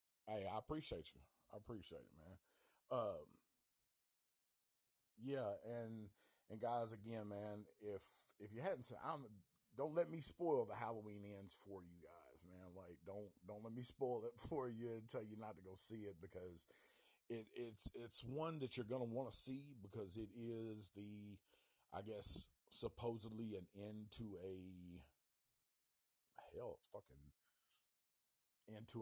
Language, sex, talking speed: English, male, 155 wpm